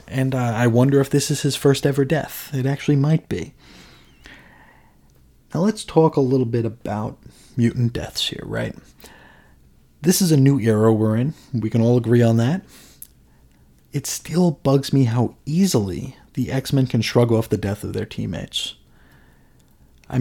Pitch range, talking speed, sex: 115-155 Hz, 165 wpm, male